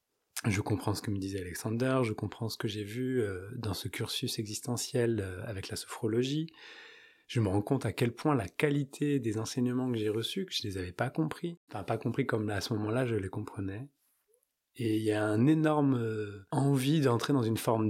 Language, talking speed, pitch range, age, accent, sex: French, 210 wpm, 105-135 Hz, 20-39, French, male